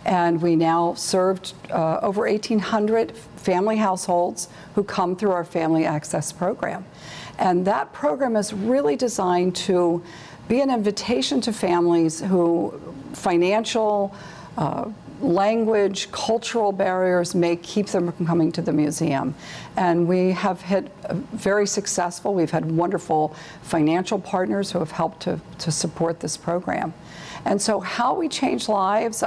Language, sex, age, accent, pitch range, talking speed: English, female, 50-69, American, 165-205 Hz, 135 wpm